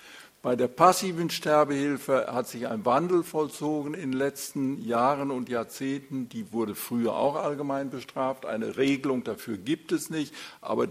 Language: German